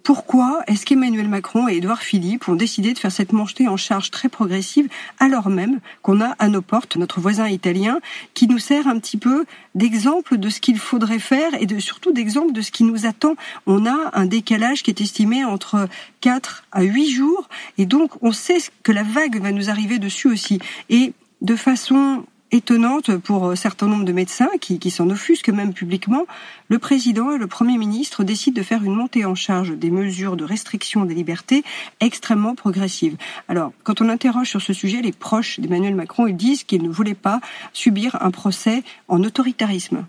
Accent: French